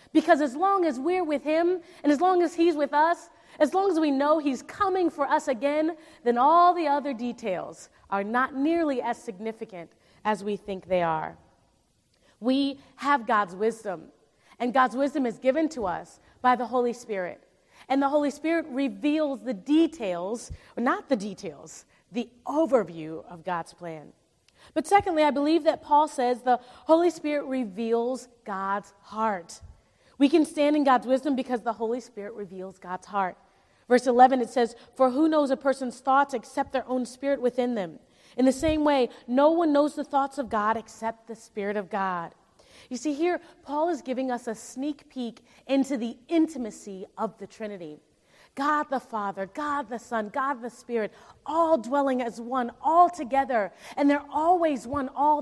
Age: 30-49